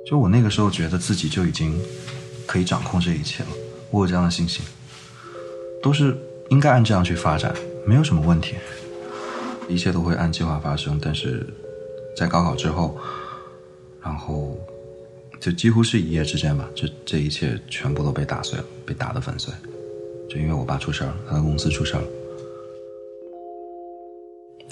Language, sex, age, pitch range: Chinese, male, 20-39, 75-115 Hz